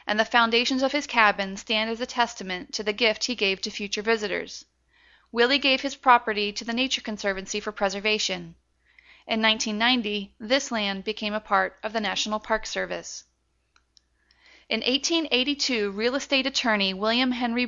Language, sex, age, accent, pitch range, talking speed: English, female, 40-59, American, 205-245 Hz, 160 wpm